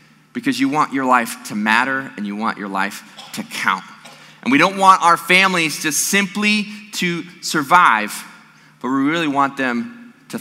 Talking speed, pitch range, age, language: 175 wpm, 140-190 Hz, 30-49, English